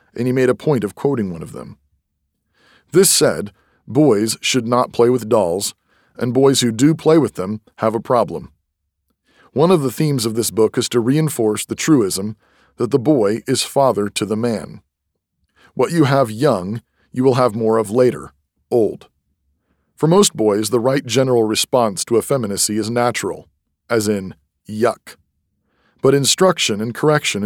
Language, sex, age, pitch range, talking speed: English, male, 40-59, 105-130 Hz, 170 wpm